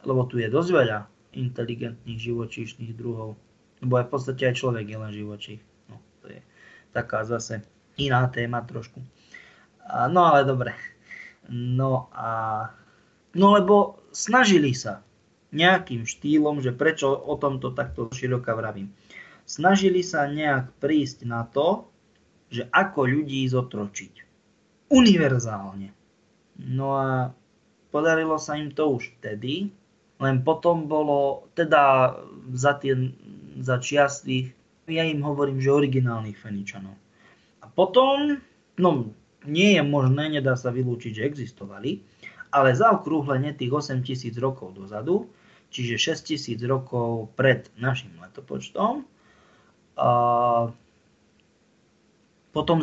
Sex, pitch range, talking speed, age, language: male, 115-145 Hz, 115 wpm, 20-39, Czech